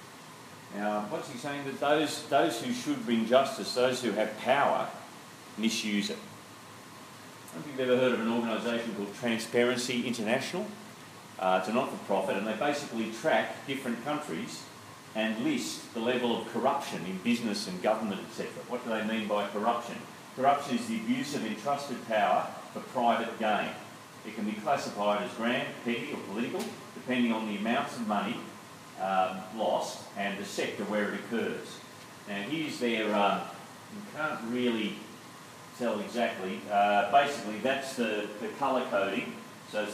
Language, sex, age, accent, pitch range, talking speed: English, male, 40-59, Australian, 115-155 Hz, 160 wpm